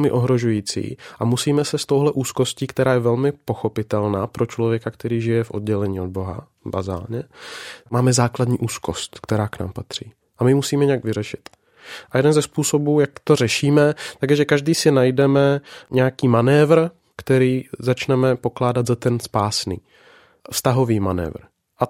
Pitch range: 115-135 Hz